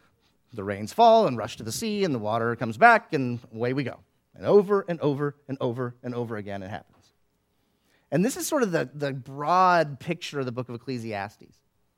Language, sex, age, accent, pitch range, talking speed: English, male, 30-49, American, 130-185 Hz, 210 wpm